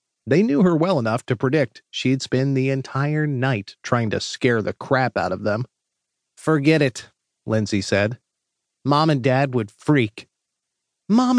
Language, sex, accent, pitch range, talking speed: English, male, American, 115-155 Hz, 160 wpm